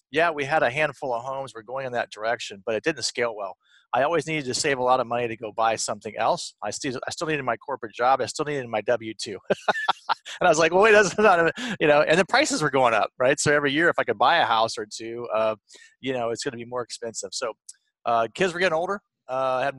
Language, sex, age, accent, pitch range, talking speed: English, male, 30-49, American, 120-160 Hz, 275 wpm